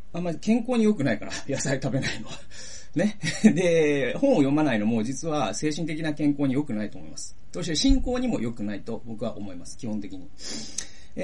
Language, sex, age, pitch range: Japanese, male, 40-59, 110-180 Hz